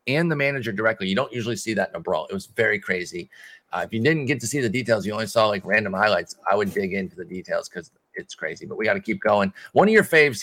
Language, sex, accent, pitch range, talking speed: English, male, American, 105-135 Hz, 290 wpm